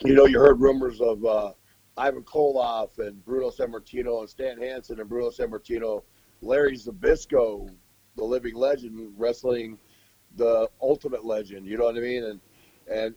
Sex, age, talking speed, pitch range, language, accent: male, 40-59, 155 wpm, 110-145 Hz, English, American